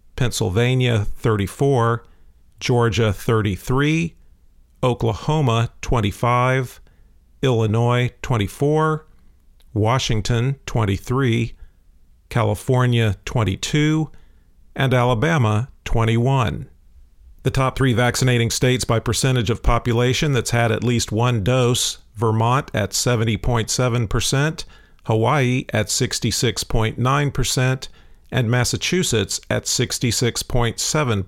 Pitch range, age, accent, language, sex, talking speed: 105-130 Hz, 50-69, American, English, male, 75 wpm